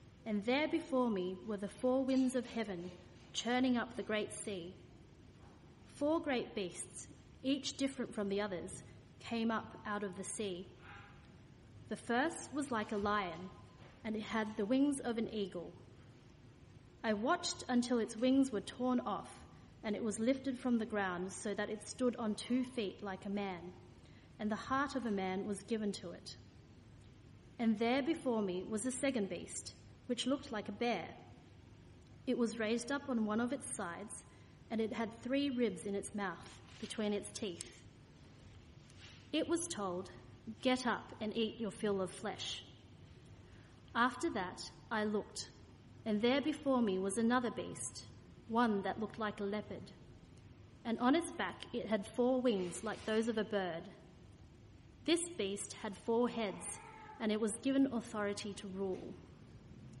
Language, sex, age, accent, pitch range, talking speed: English, female, 30-49, Australian, 200-250 Hz, 165 wpm